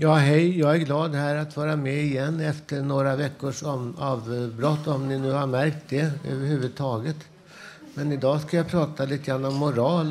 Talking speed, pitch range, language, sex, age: 180 wpm, 130-150 Hz, Swedish, male, 60-79